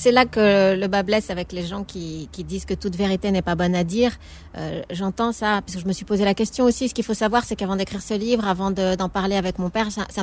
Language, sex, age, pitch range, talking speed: French, female, 30-49, 185-225 Hz, 295 wpm